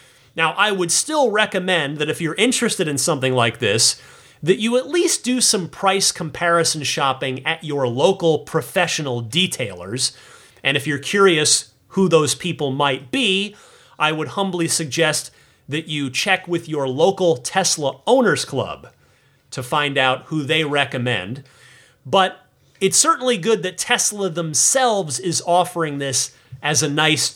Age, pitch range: 30-49, 140-195 Hz